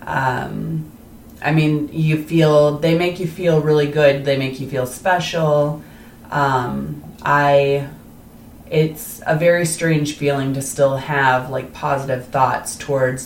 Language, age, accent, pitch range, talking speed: English, 30-49, American, 125-140 Hz, 135 wpm